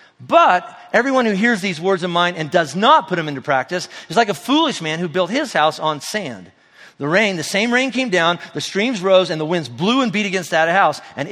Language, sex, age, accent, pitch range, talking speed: English, male, 50-69, American, 145-195 Hz, 245 wpm